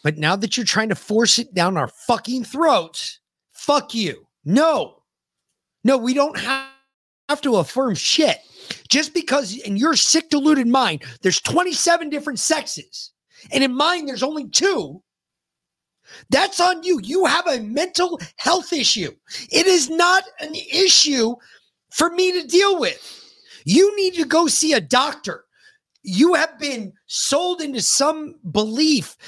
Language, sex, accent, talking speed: English, male, American, 150 wpm